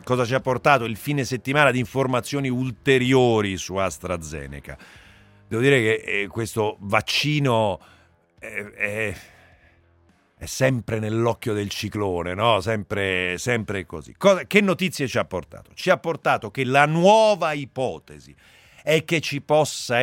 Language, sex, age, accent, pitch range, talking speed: Italian, male, 50-69, native, 105-140 Hz, 125 wpm